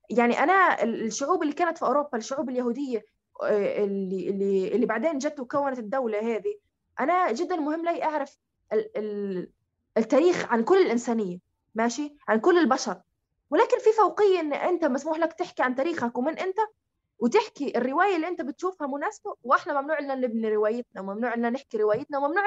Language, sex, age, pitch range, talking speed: Arabic, female, 20-39, 235-345 Hz, 155 wpm